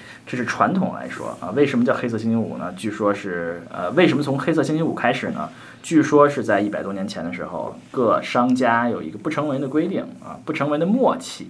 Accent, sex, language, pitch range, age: native, male, Chinese, 100-135 Hz, 20-39